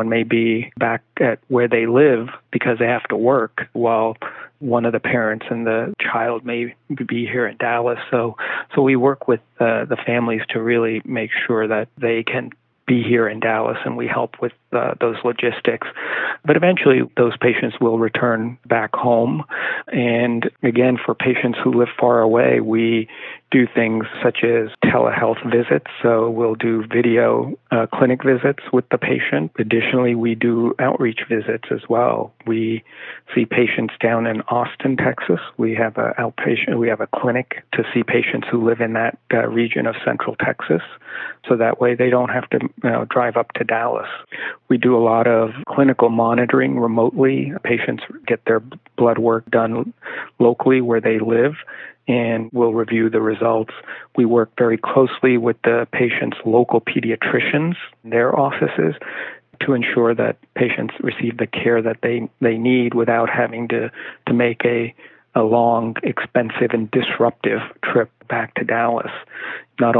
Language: English